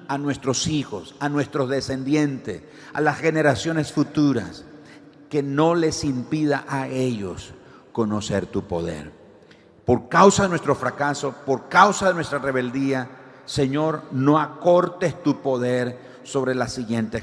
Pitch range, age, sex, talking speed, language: 115-150 Hz, 50-69, male, 130 wpm, Spanish